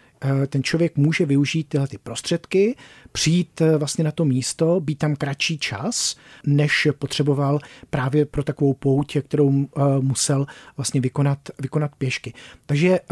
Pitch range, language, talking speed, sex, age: 140-160 Hz, Czech, 130 wpm, male, 40-59